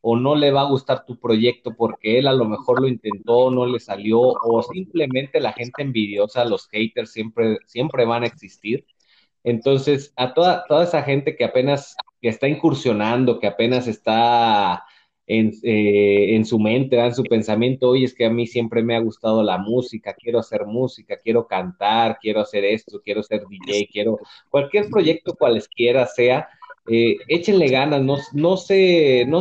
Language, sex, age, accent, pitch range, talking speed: Spanish, male, 30-49, Mexican, 115-155 Hz, 175 wpm